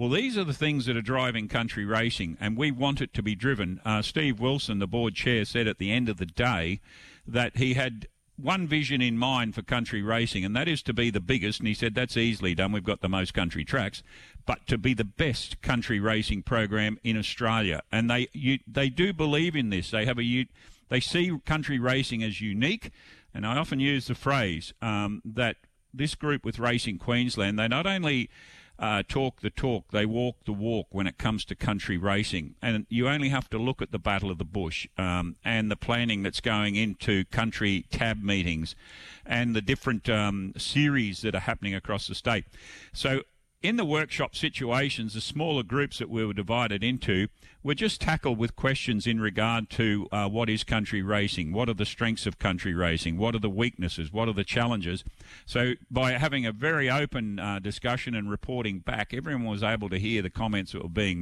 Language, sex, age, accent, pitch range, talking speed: English, male, 50-69, Australian, 105-130 Hz, 205 wpm